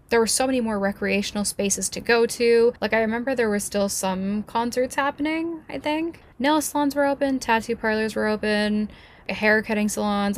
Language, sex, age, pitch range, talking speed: English, female, 10-29, 195-235 Hz, 185 wpm